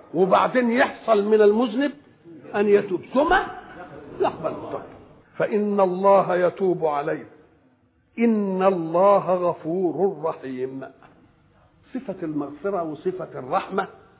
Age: 60-79